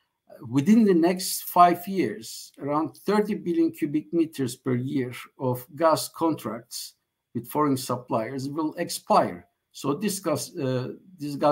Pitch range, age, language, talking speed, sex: 130-170 Hz, 60-79, Turkish, 120 wpm, male